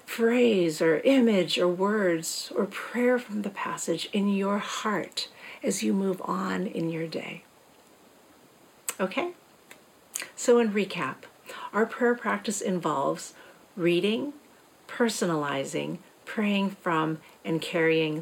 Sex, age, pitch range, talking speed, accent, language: female, 50-69, 185-245 Hz, 110 wpm, American, English